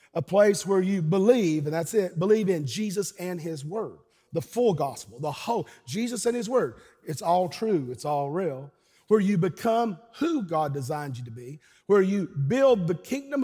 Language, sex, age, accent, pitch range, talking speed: English, male, 40-59, American, 160-210 Hz, 190 wpm